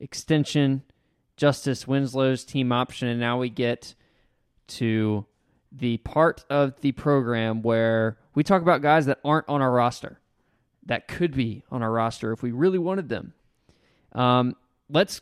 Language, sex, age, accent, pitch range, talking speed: English, male, 20-39, American, 120-145 Hz, 150 wpm